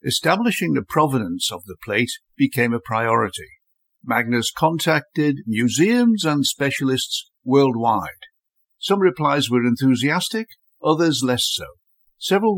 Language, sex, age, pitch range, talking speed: English, male, 60-79, 120-175 Hz, 110 wpm